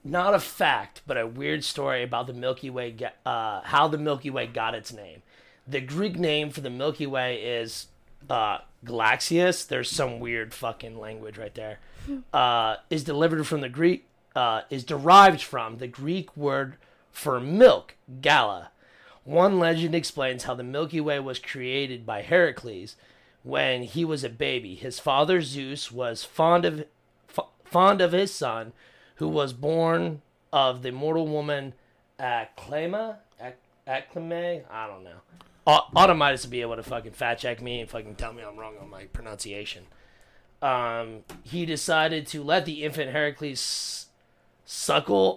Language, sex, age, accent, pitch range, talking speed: English, male, 30-49, American, 120-155 Hz, 160 wpm